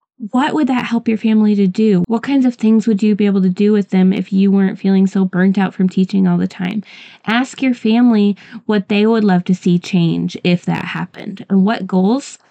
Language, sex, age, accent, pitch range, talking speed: English, female, 20-39, American, 190-220 Hz, 230 wpm